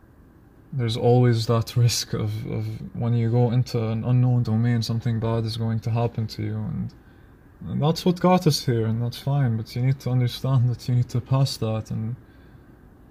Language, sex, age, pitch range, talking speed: English, male, 20-39, 115-135 Hz, 195 wpm